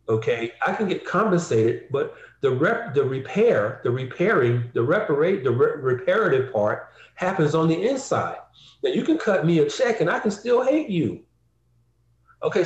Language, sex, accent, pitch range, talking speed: English, male, American, 120-190 Hz, 170 wpm